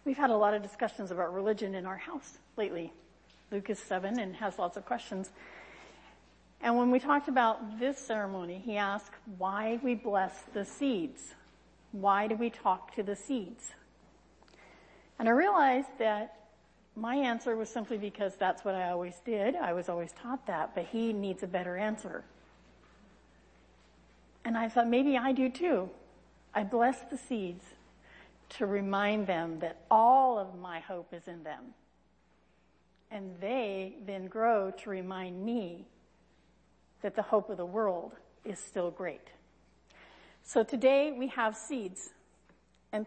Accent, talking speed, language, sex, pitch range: American, 155 wpm, English, female, 195-235 Hz